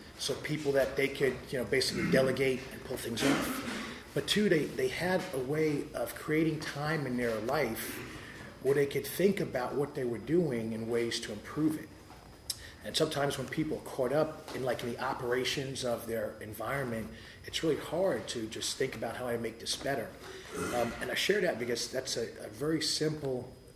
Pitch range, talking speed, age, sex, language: 115-140 Hz, 195 wpm, 30-49, male, English